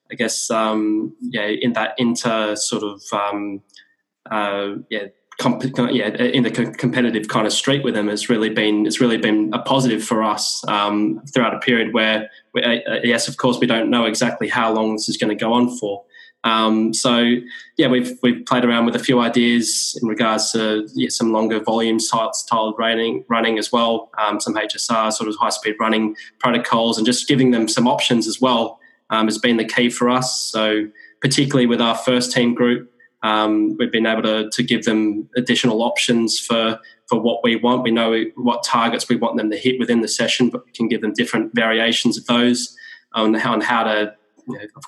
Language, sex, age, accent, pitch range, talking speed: English, male, 10-29, Australian, 110-125 Hz, 200 wpm